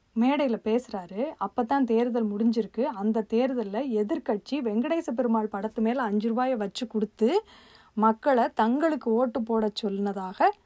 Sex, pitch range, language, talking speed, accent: female, 220-280 Hz, Tamil, 125 wpm, native